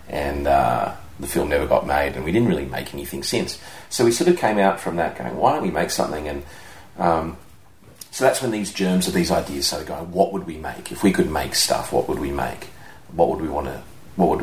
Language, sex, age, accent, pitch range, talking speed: English, male, 40-59, Australian, 75-95 Hz, 230 wpm